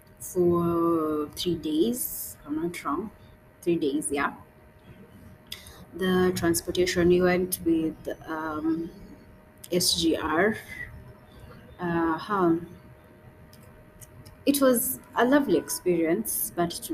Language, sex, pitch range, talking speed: English, female, 165-185 Hz, 85 wpm